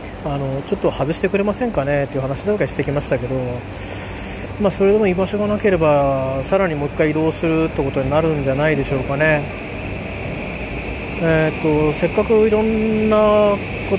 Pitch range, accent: 135-180 Hz, native